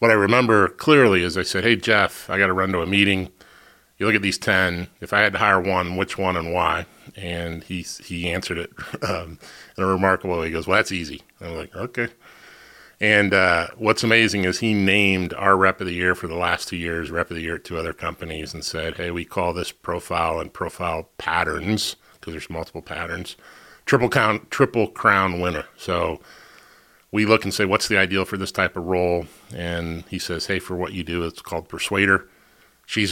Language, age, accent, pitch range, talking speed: English, 30-49, American, 85-100 Hz, 215 wpm